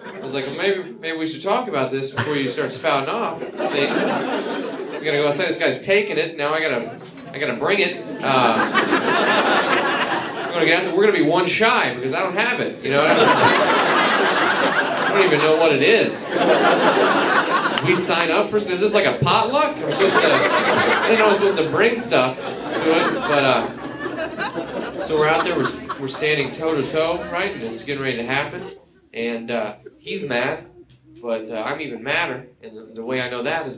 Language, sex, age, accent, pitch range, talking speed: Danish, male, 30-49, American, 130-175 Hz, 210 wpm